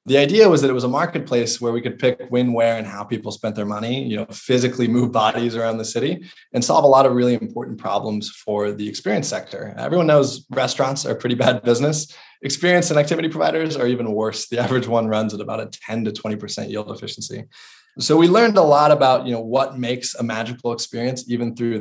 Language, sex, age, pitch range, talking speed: English, male, 20-39, 115-135 Hz, 225 wpm